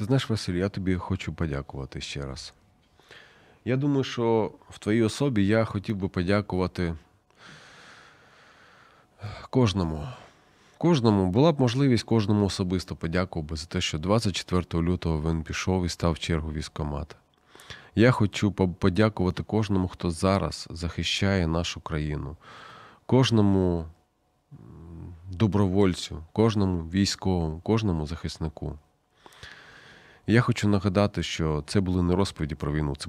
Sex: male